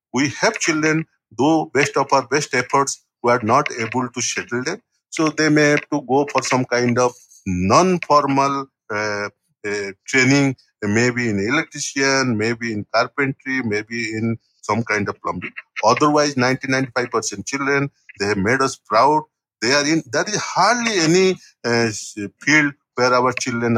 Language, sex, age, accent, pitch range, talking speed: English, male, 50-69, Indian, 115-150 Hz, 160 wpm